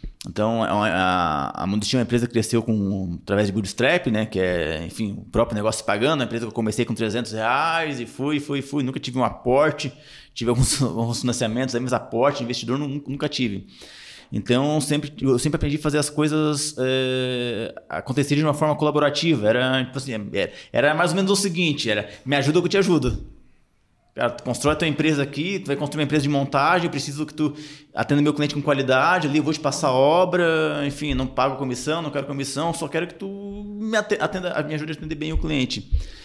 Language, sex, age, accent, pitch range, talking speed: Portuguese, male, 20-39, Brazilian, 120-155 Hz, 215 wpm